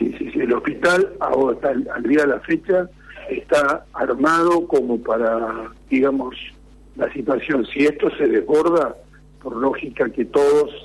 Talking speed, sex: 150 wpm, male